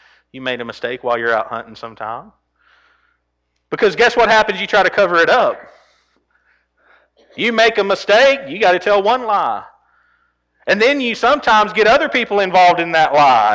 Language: English